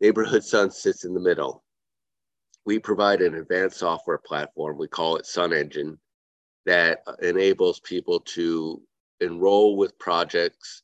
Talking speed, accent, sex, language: 135 wpm, American, male, English